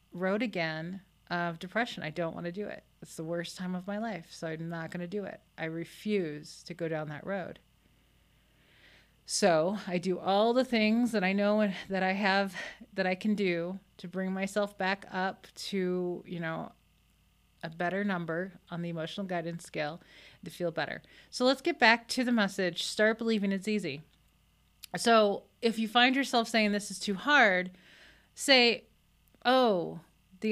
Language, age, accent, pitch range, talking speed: English, 30-49, American, 175-215 Hz, 175 wpm